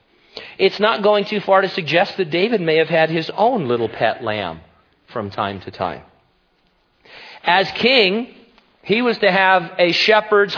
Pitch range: 115-170 Hz